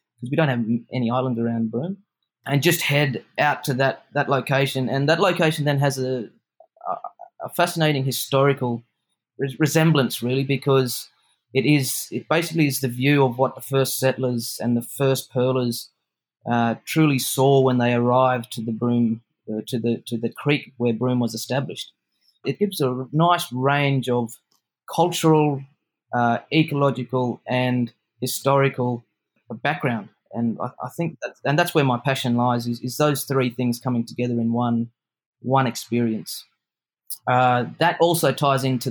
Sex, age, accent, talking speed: male, 30-49, Australian, 155 wpm